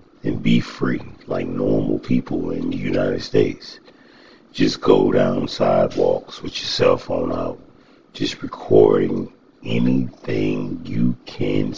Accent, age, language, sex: American, 60-79, English, male